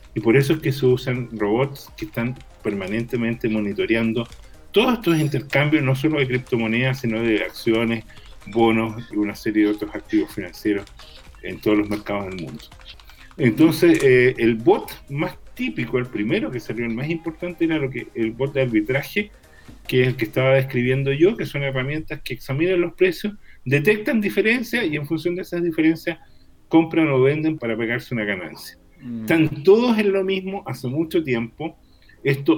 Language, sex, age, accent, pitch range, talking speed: Spanish, male, 40-59, Argentinian, 115-160 Hz, 170 wpm